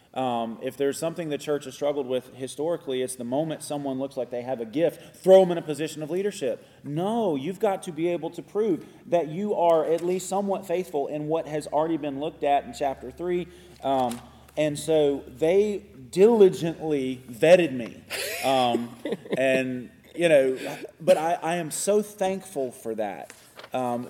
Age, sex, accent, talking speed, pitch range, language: 30-49, male, American, 180 wpm, 135-175 Hz, English